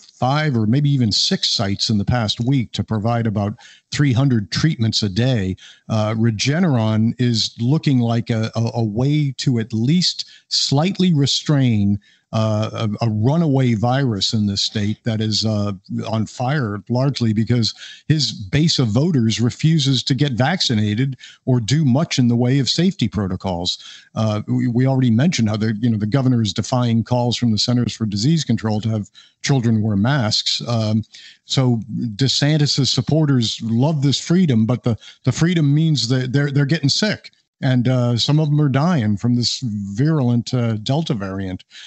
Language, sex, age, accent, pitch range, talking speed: English, male, 50-69, American, 110-135 Hz, 170 wpm